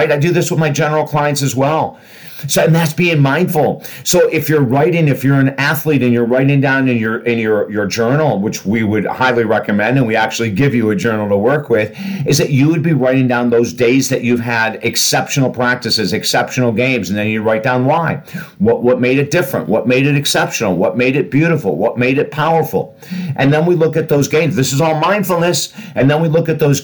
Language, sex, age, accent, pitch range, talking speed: English, male, 50-69, American, 120-150 Hz, 230 wpm